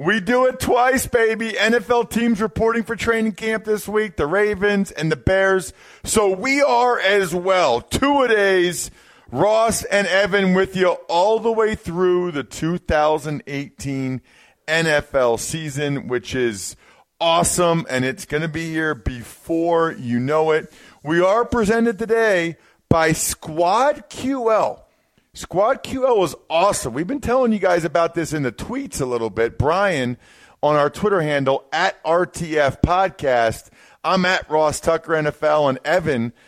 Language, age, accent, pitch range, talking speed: English, 40-59, American, 130-205 Hz, 145 wpm